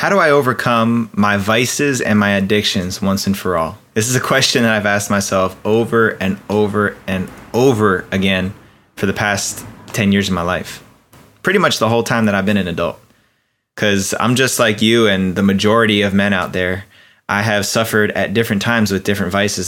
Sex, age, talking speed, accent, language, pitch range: male, 20-39, 200 wpm, American, English, 95-115 Hz